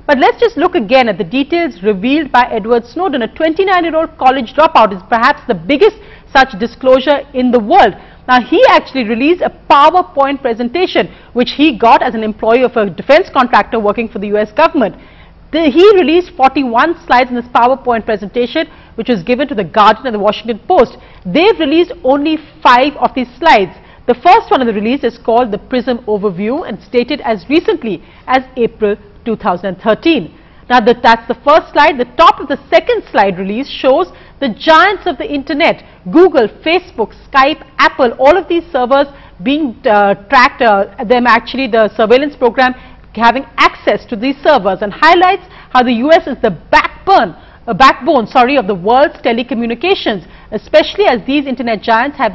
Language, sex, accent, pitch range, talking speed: English, female, Indian, 230-310 Hz, 180 wpm